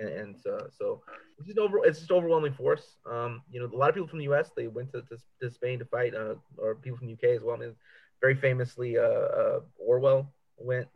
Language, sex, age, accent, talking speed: English, male, 30-49, American, 240 wpm